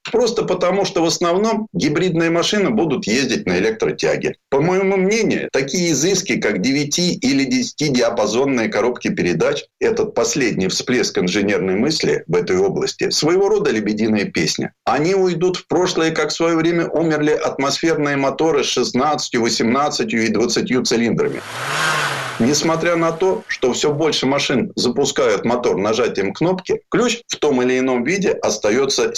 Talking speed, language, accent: 145 wpm, Russian, native